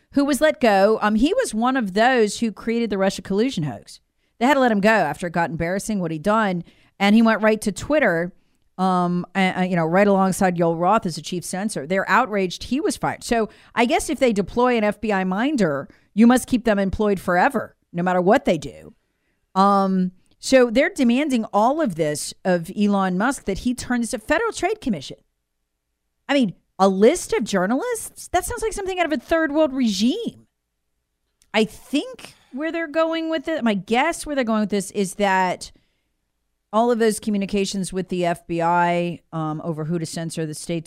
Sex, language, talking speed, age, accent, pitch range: female, English, 195 wpm, 40-59, American, 165-230 Hz